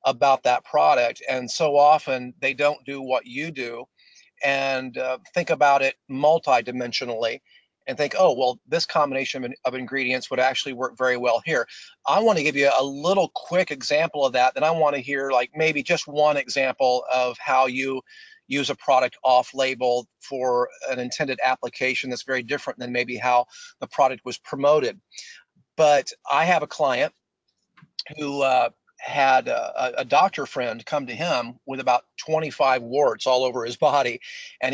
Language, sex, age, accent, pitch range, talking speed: English, male, 40-59, American, 130-150 Hz, 175 wpm